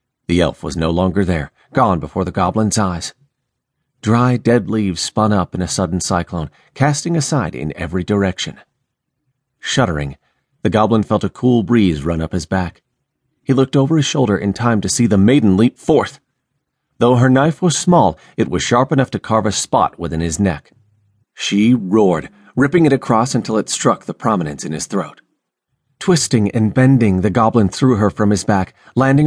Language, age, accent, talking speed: English, 40-59, American, 180 wpm